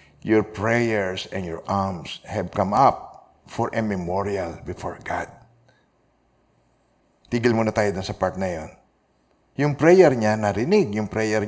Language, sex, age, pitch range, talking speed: Filipino, male, 50-69, 105-145 Hz, 135 wpm